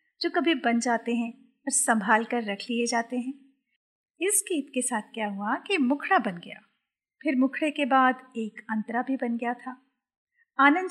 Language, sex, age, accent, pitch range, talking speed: Hindi, female, 50-69, native, 235-295 Hz, 180 wpm